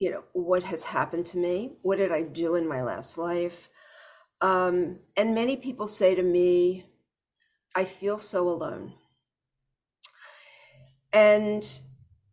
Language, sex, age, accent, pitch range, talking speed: English, female, 50-69, American, 175-215 Hz, 130 wpm